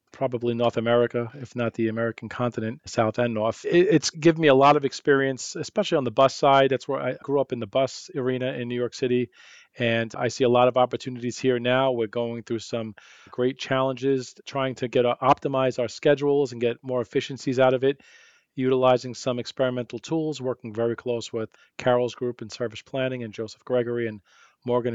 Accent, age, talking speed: American, 40-59, 200 wpm